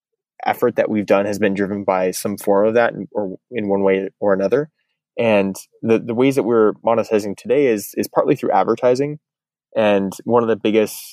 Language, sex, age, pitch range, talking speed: English, male, 20-39, 100-120 Hz, 200 wpm